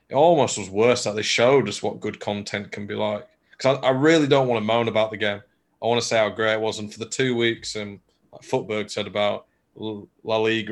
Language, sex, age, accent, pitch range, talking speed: English, male, 20-39, British, 105-130 Hz, 260 wpm